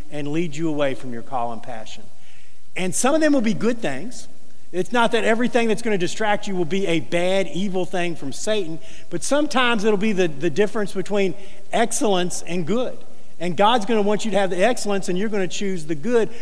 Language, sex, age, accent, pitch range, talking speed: English, male, 50-69, American, 170-250 Hz, 225 wpm